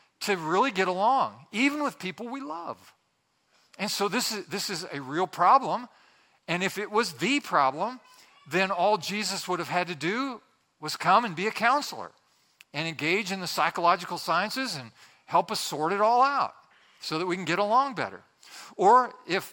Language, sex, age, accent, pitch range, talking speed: English, male, 50-69, American, 185-240 Hz, 185 wpm